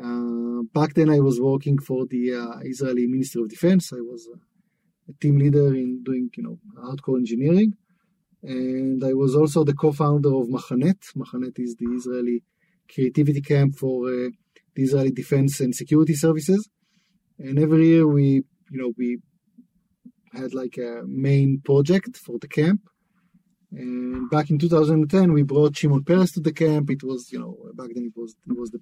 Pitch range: 135-180 Hz